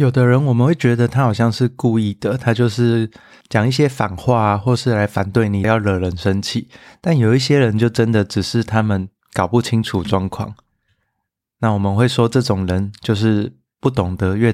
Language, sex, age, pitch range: Chinese, male, 20-39, 105-125 Hz